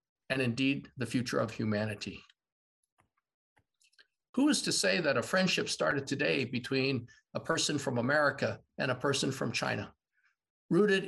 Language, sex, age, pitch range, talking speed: English, male, 50-69, 130-185 Hz, 140 wpm